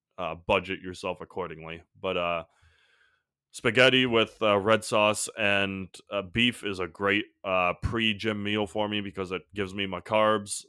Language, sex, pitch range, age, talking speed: English, male, 95-105 Hz, 20-39, 155 wpm